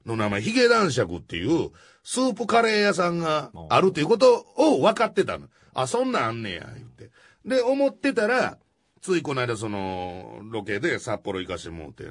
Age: 40-59